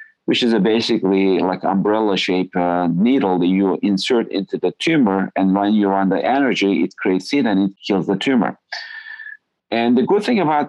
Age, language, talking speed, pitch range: 40-59, English, 185 wpm, 100-120 Hz